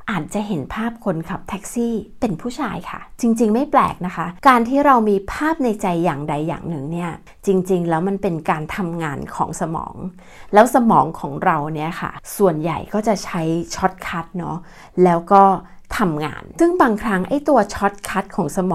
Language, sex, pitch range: Thai, female, 175-215 Hz